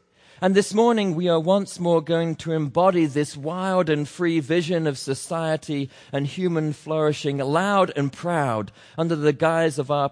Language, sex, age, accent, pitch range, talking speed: English, male, 40-59, British, 115-165 Hz, 165 wpm